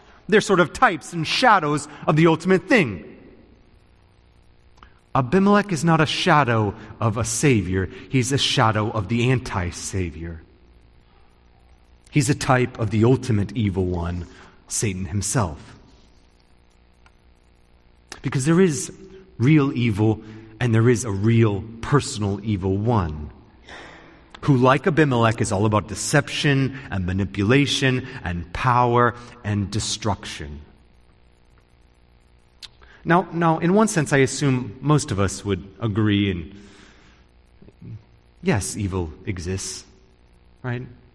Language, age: English, 30-49